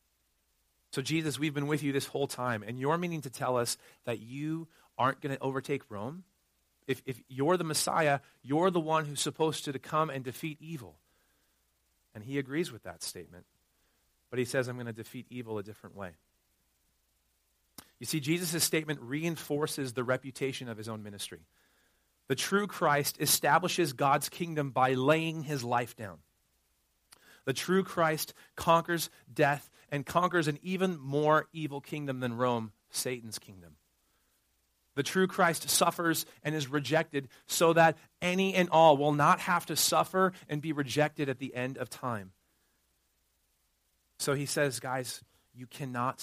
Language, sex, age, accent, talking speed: English, male, 40-59, American, 160 wpm